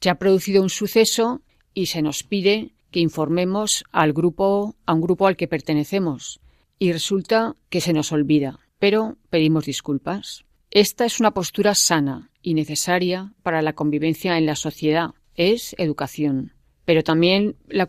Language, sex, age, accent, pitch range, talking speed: Spanish, female, 40-59, Spanish, 160-195 Hz, 155 wpm